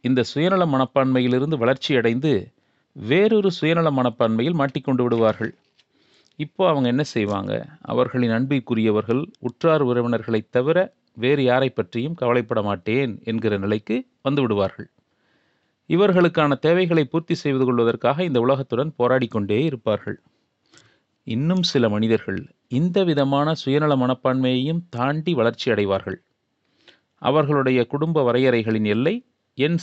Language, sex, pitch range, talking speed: Tamil, male, 120-160 Hz, 100 wpm